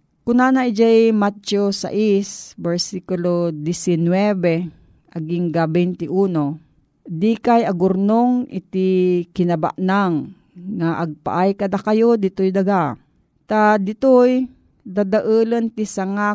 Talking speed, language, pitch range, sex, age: 90 wpm, Filipino, 170-220 Hz, female, 40-59